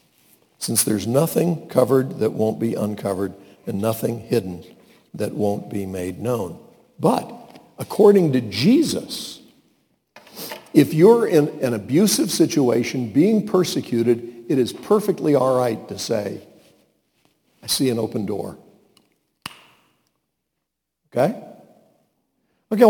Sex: male